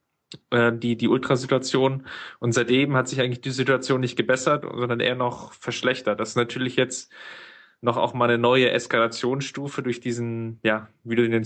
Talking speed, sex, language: 170 wpm, male, German